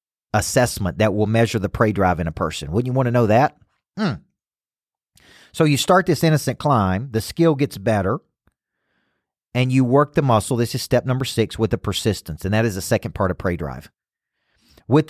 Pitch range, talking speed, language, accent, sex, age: 105-145 Hz, 200 wpm, English, American, male, 40-59